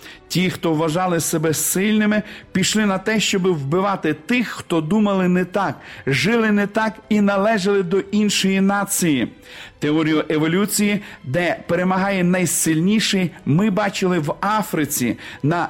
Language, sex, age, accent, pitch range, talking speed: Ukrainian, male, 40-59, native, 160-200 Hz, 125 wpm